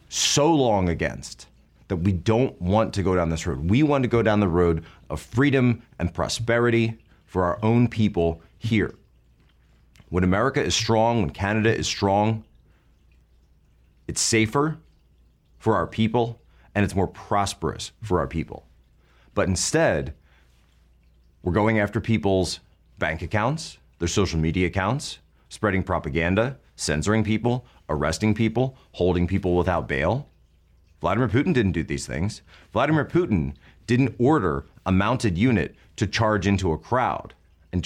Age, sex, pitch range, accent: 30-49, male, 80-110 Hz, American